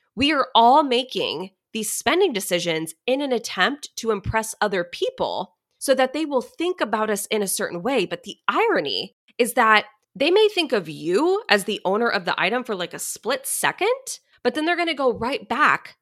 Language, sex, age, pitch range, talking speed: English, female, 20-39, 195-280 Hz, 200 wpm